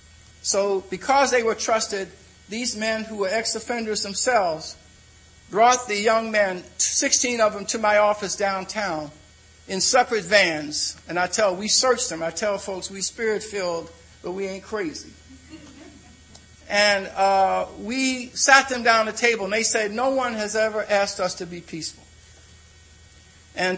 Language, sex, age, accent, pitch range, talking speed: English, male, 50-69, American, 165-210 Hz, 155 wpm